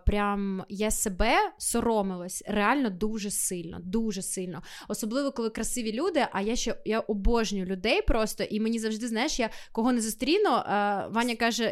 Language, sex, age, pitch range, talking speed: Ukrainian, female, 20-39, 205-245 Hz, 155 wpm